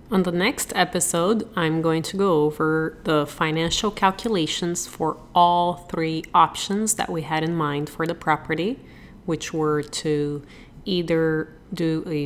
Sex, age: female, 30-49